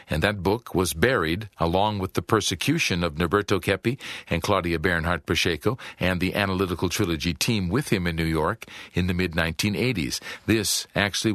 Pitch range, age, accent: 95-115 Hz, 50-69, American